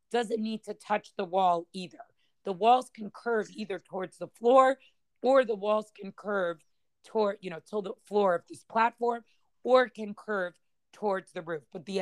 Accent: American